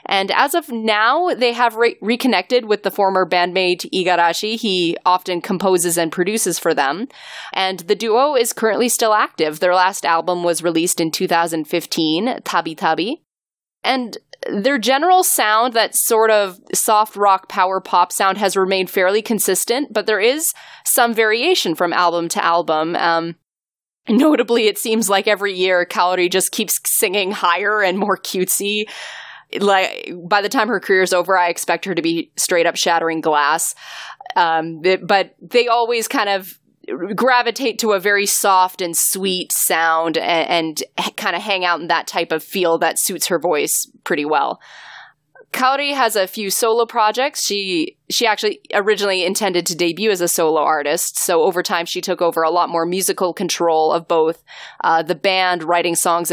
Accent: American